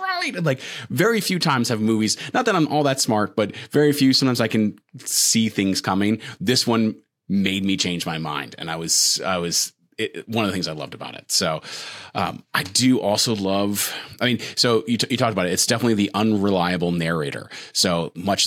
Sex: male